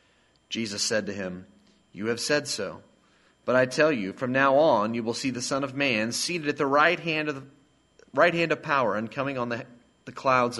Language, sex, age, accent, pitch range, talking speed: English, male, 30-49, American, 110-140 Hz, 220 wpm